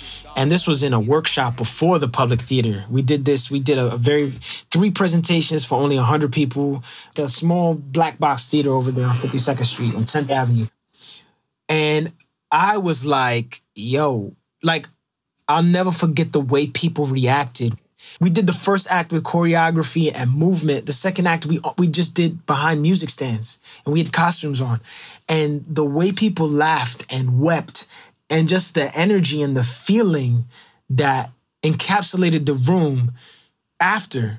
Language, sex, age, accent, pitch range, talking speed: English, male, 20-39, American, 125-165 Hz, 165 wpm